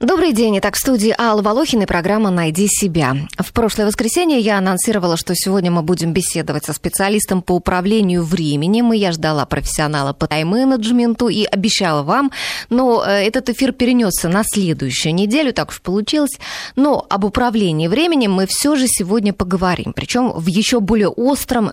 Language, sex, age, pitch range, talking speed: Russian, female, 20-39, 165-235 Hz, 165 wpm